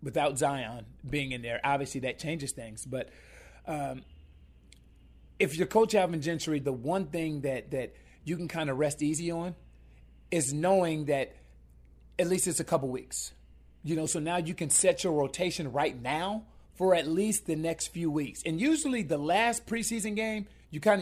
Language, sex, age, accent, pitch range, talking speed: English, male, 30-49, American, 135-180 Hz, 180 wpm